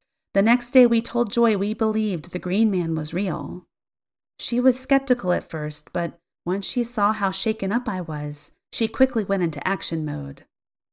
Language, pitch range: English, 165-225 Hz